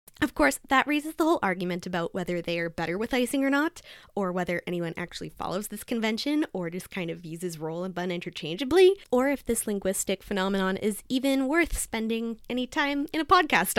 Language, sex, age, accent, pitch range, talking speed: English, female, 20-39, American, 180-250 Hz, 200 wpm